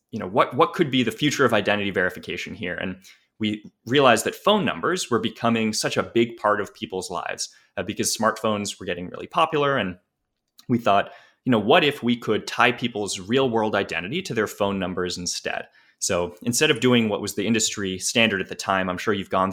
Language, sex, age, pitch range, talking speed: English, male, 20-39, 95-120 Hz, 210 wpm